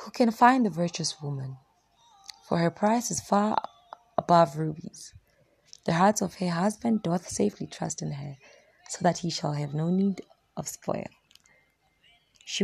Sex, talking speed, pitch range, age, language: female, 155 wpm, 165-215 Hz, 20-39, English